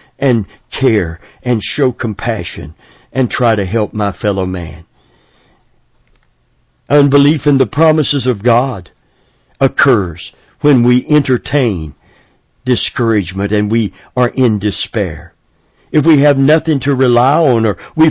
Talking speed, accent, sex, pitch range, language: 125 wpm, American, male, 105-135 Hz, English